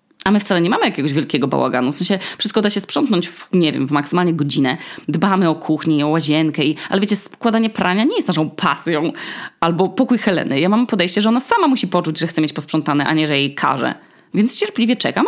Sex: female